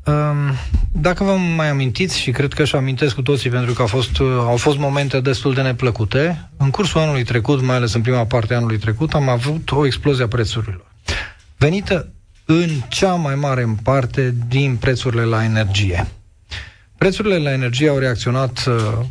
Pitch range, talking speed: 115-150 Hz, 175 wpm